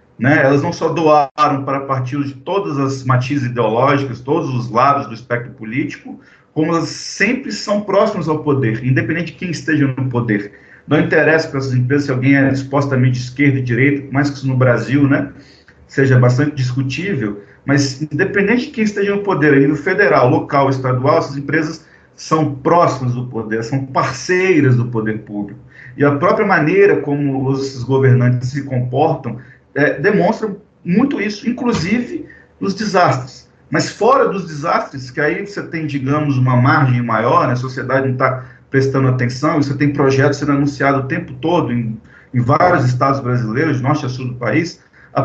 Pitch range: 130-160 Hz